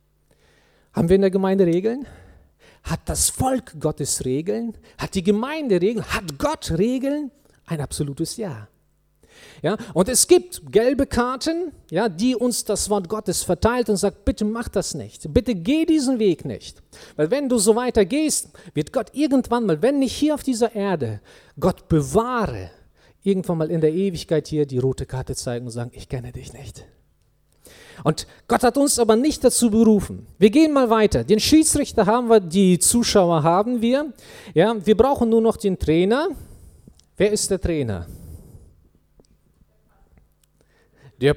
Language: German